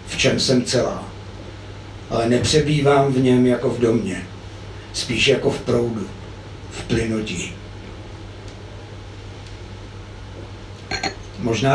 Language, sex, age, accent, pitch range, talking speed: Czech, male, 60-79, native, 100-125 Hz, 90 wpm